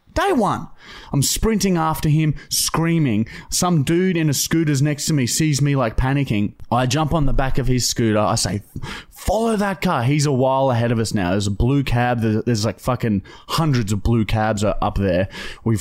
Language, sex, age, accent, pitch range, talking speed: English, male, 20-39, Australian, 115-160 Hz, 205 wpm